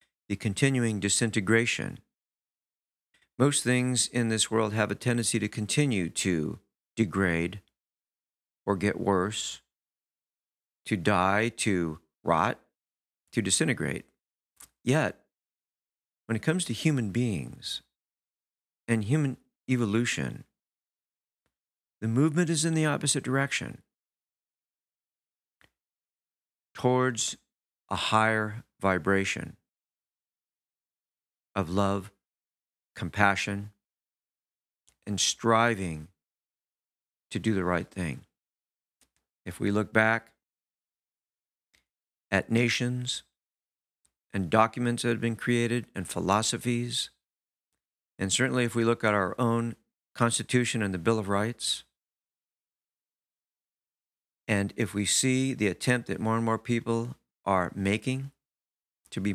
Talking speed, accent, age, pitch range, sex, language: 100 wpm, American, 50-69, 95-120 Hz, male, English